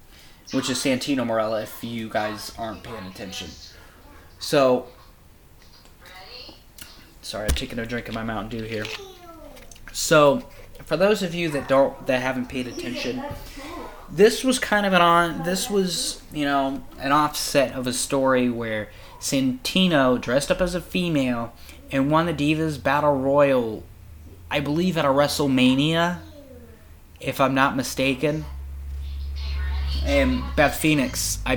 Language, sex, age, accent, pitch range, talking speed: English, male, 20-39, American, 105-145 Hz, 140 wpm